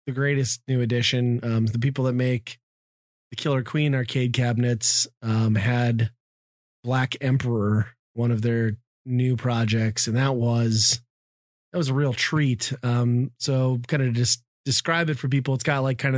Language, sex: English, male